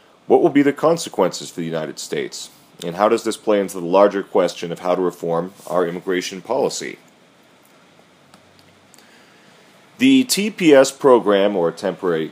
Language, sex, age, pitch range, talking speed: Spanish, male, 30-49, 85-95 Hz, 145 wpm